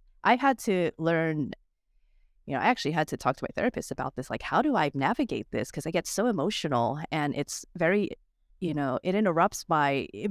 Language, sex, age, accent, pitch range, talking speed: English, female, 30-49, American, 155-210 Hz, 210 wpm